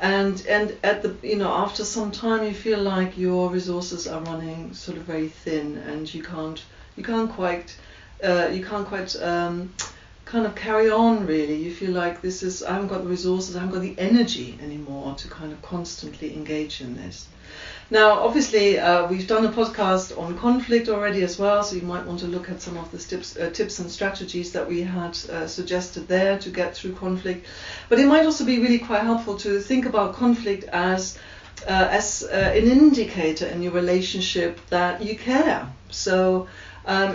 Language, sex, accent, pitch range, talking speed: English, female, British, 170-210 Hz, 195 wpm